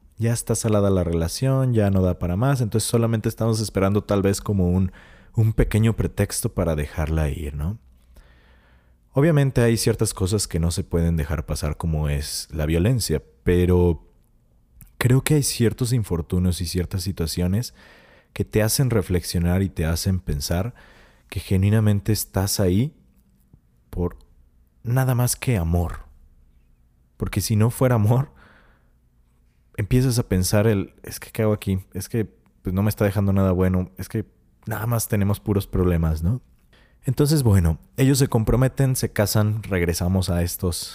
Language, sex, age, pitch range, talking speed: Spanish, male, 30-49, 85-115 Hz, 155 wpm